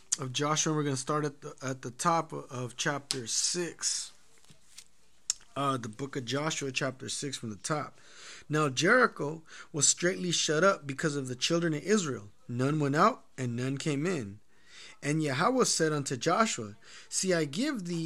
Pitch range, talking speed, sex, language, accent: 145-175 Hz, 175 wpm, male, English, American